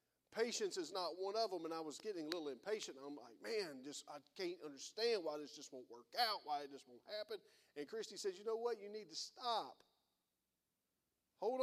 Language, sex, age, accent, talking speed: English, male, 40-59, American, 210 wpm